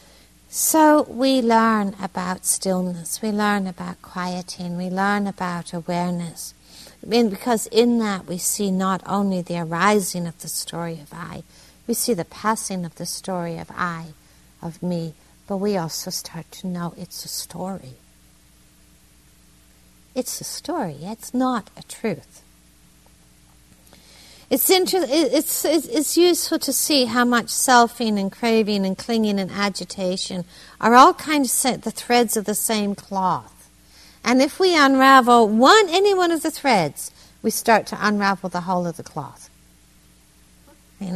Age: 60-79